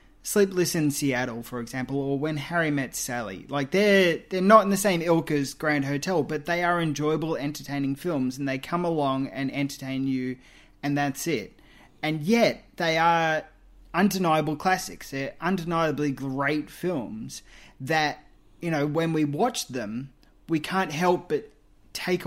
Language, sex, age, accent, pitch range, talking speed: English, male, 30-49, Australian, 135-170 Hz, 160 wpm